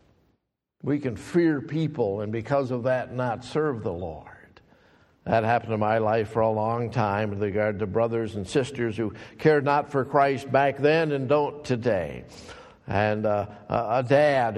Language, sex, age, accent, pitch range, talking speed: English, male, 50-69, American, 105-140 Hz, 170 wpm